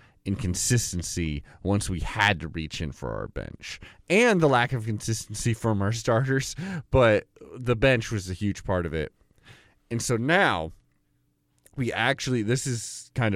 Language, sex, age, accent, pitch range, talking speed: English, male, 30-49, American, 95-130 Hz, 155 wpm